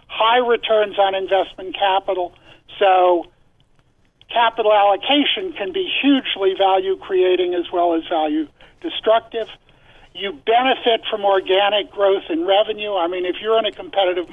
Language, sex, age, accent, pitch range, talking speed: English, male, 50-69, American, 175-220 Hz, 125 wpm